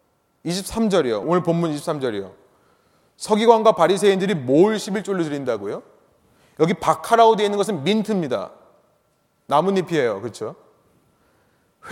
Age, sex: 30-49, male